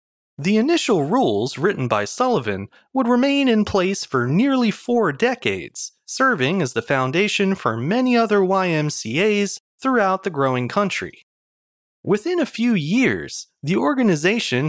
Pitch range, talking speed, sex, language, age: 150-235 Hz, 130 wpm, male, English, 30-49